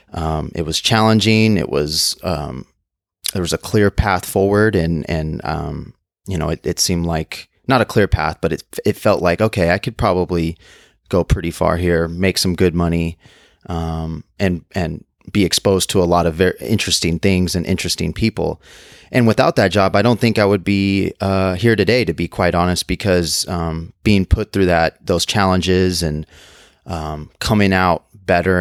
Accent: American